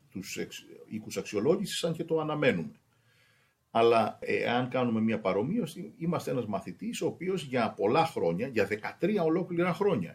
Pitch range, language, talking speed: 120-165 Hz, Greek, 140 wpm